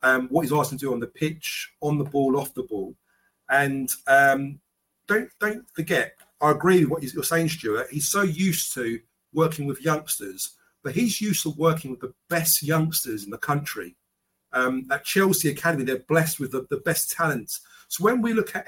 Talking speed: 200 wpm